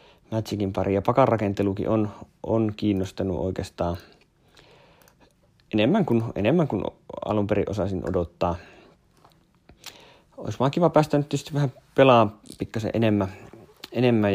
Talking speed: 100 wpm